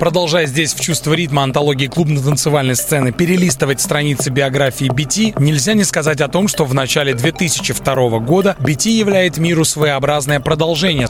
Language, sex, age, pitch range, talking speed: Russian, male, 30-49, 135-175 Hz, 145 wpm